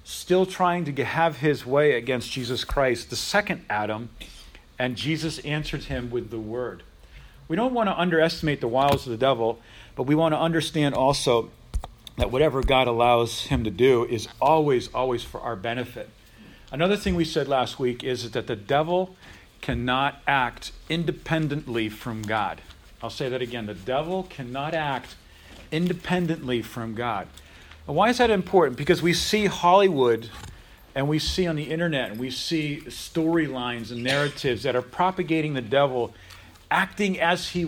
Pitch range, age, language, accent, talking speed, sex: 125-170 Hz, 40-59, English, American, 160 wpm, male